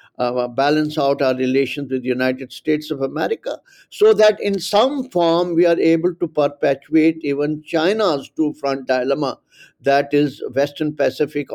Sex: male